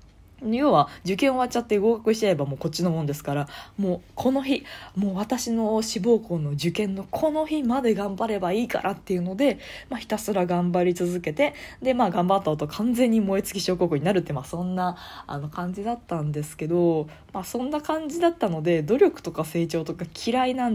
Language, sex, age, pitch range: Japanese, female, 20-39, 160-235 Hz